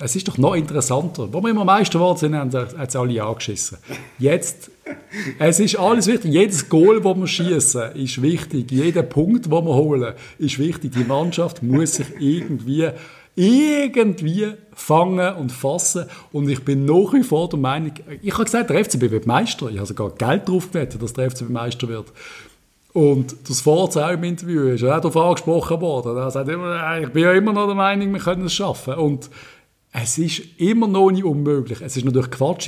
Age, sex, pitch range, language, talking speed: 50-69, male, 130-185 Hz, German, 185 wpm